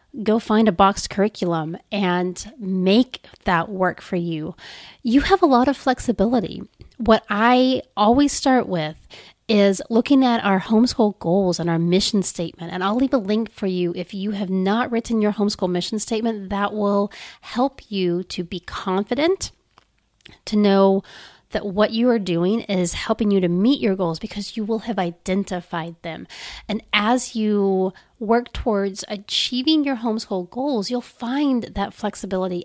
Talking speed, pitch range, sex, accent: 160 wpm, 190-235 Hz, female, American